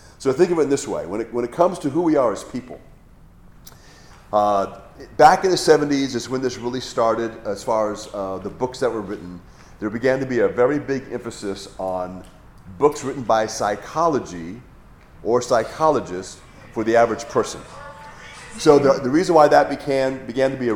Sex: male